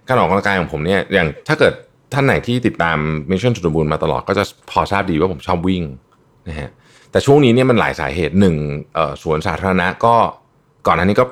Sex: male